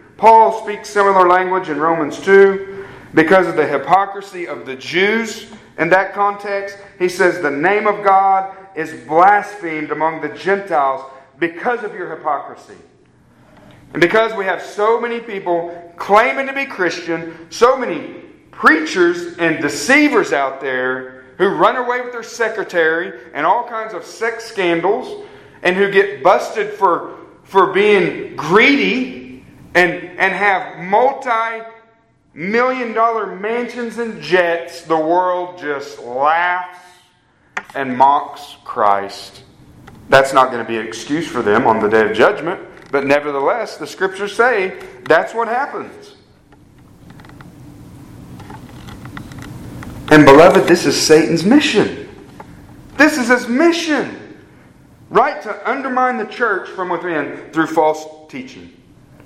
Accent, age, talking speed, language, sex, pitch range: American, 40-59, 130 wpm, English, male, 155-225 Hz